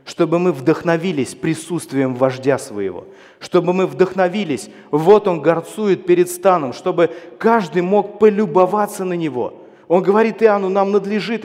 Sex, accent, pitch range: male, native, 155-200 Hz